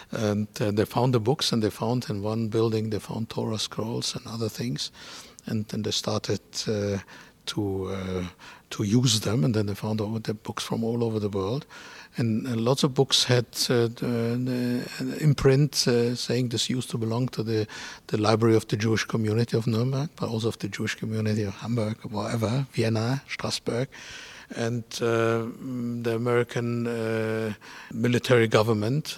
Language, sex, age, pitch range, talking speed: English, male, 60-79, 110-125 Hz, 170 wpm